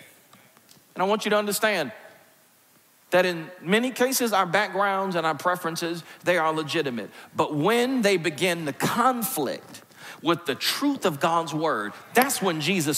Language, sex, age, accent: English, male, 40-59, American